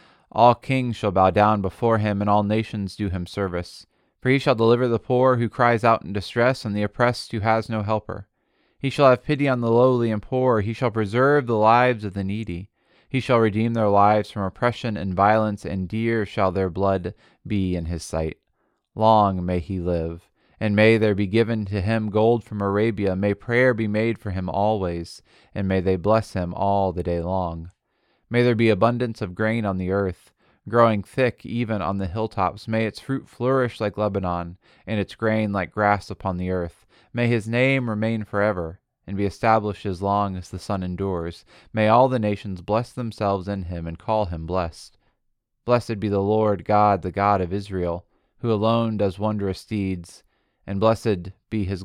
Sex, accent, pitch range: male, American, 95-115 Hz